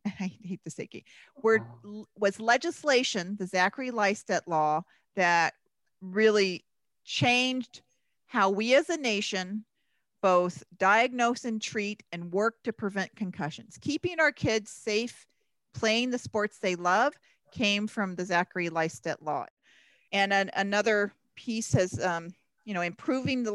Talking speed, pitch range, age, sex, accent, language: 140 wpm, 175-220 Hz, 40-59, female, American, English